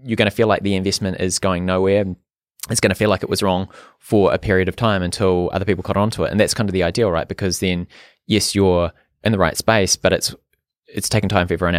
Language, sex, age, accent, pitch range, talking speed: English, male, 20-39, Australian, 90-110 Hz, 265 wpm